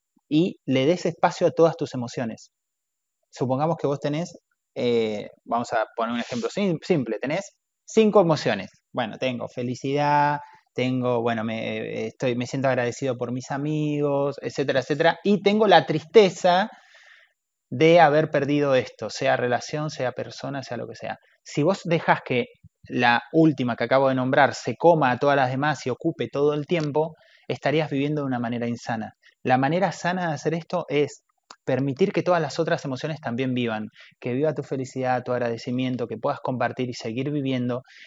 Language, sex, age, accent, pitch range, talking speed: Spanish, male, 20-39, Argentinian, 125-165 Hz, 170 wpm